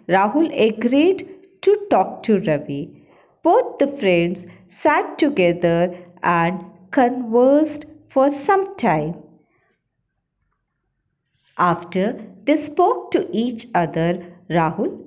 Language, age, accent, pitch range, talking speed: Hindi, 50-69, native, 175-275 Hz, 90 wpm